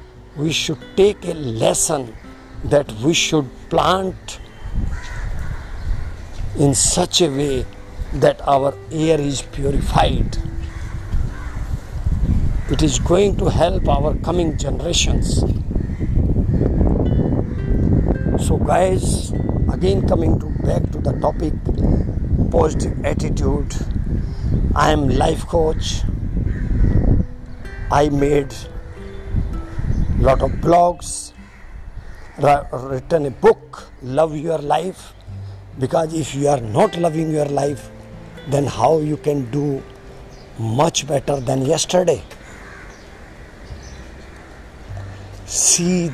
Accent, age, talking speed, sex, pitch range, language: Indian, 50-69, 90 wpm, male, 100-155 Hz, English